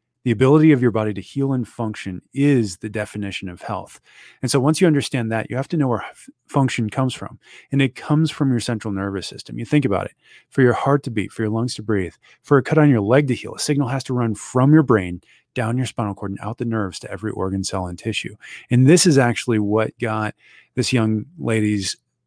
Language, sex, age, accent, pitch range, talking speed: English, male, 30-49, American, 105-135 Hz, 240 wpm